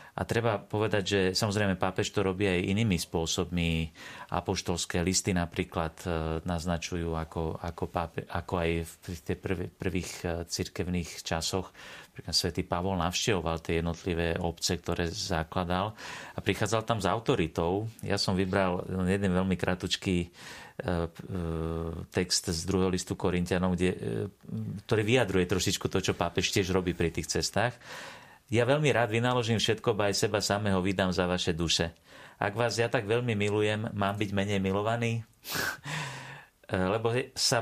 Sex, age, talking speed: male, 40-59, 135 wpm